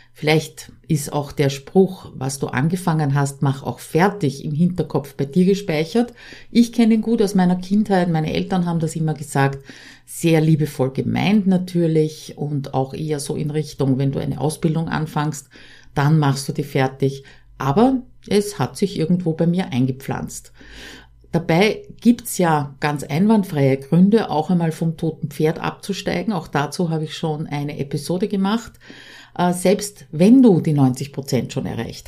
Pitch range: 140-190 Hz